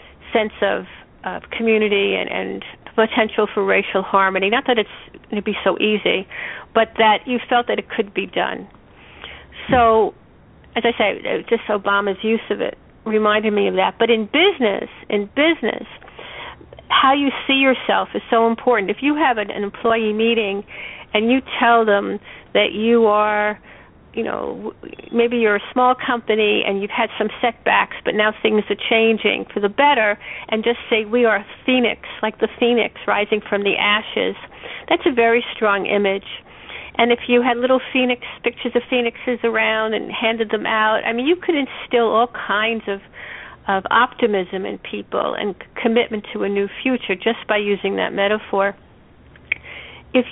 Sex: female